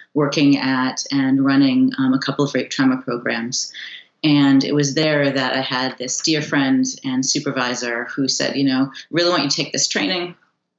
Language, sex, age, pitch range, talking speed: English, female, 30-49, 135-175 Hz, 190 wpm